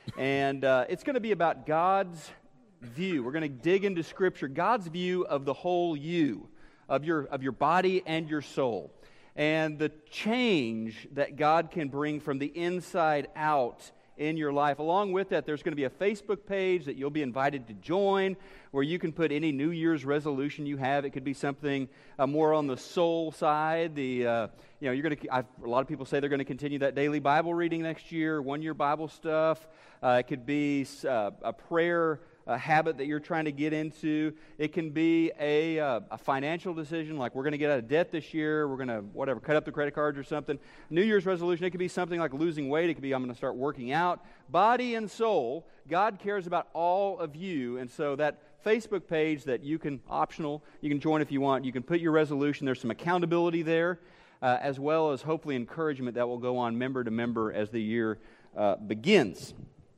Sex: male